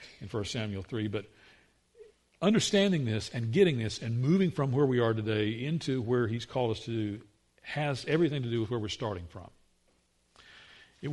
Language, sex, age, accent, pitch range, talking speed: English, male, 50-69, American, 110-150 Hz, 185 wpm